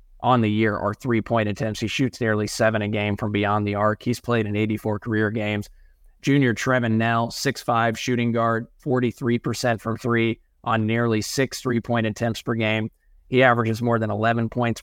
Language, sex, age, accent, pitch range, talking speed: English, male, 20-39, American, 110-125 Hz, 180 wpm